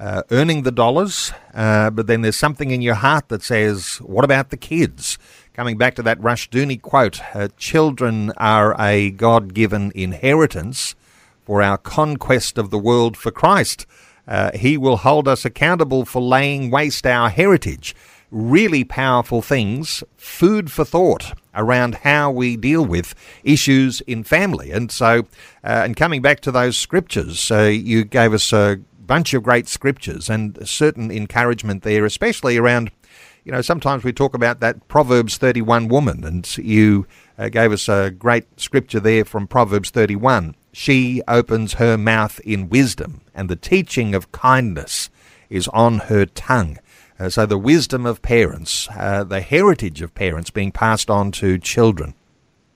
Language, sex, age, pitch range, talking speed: English, male, 50-69, 105-130 Hz, 160 wpm